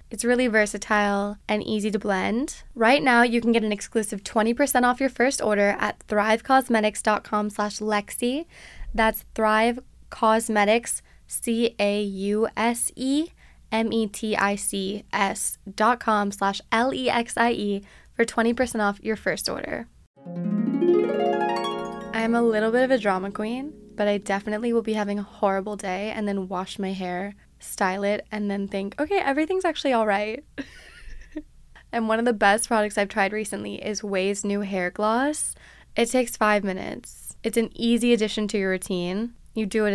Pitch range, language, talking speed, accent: 205-235 Hz, English, 145 wpm, American